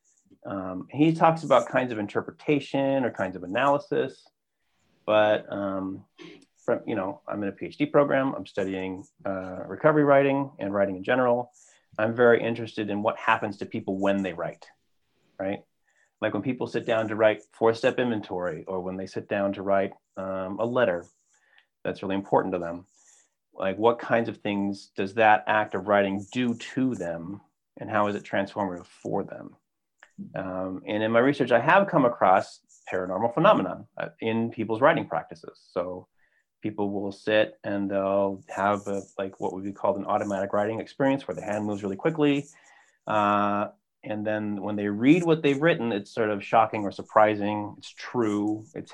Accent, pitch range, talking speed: American, 100-120 Hz, 175 wpm